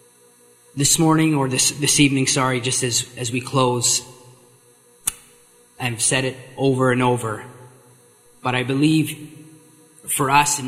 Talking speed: 135 wpm